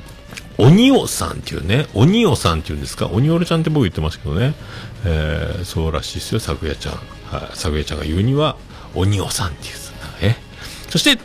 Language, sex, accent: Japanese, male, native